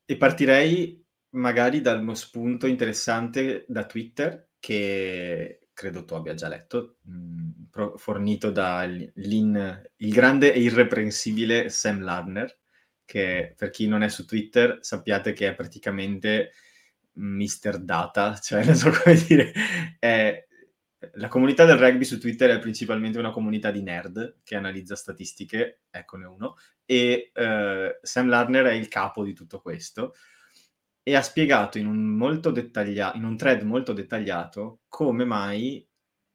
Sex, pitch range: male, 100-130 Hz